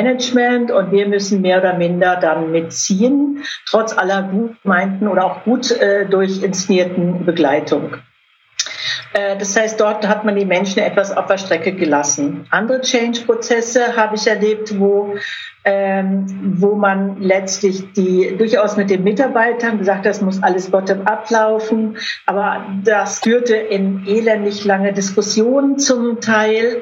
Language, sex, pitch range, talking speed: German, female, 195-220 Hz, 145 wpm